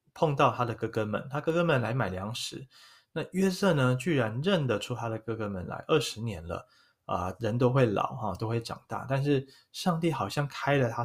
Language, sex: Chinese, male